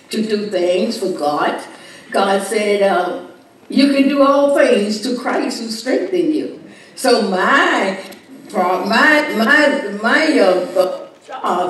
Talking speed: 135 wpm